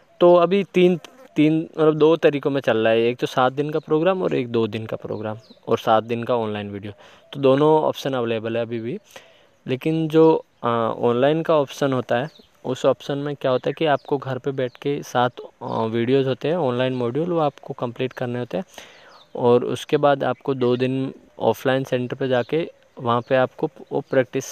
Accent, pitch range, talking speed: native, 125-155 Hz, 200 wpm